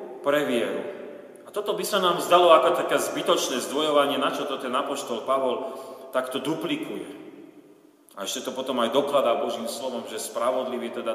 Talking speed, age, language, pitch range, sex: 165 wpm, 40-59, Slovak, 125-150 Hz, male